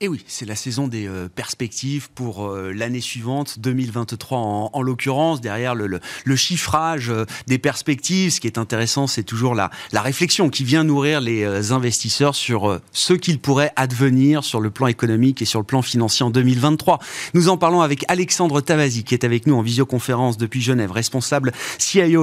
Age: 30-49